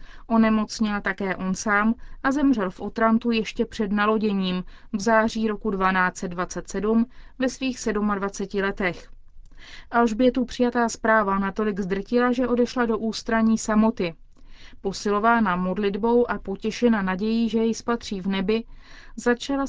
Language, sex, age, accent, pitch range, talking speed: Czech, female, 30-49, native, 195-235 Hz, 120 wpm